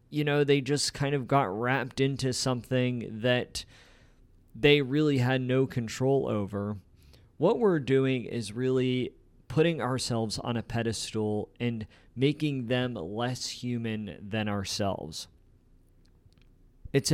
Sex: male